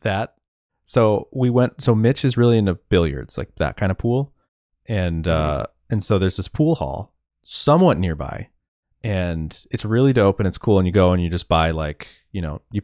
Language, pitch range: English, 85-115 Hz